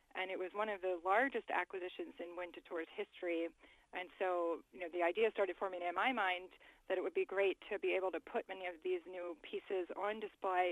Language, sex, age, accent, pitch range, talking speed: English, female, 30-49, American, 180-215 Hz, 220 wpm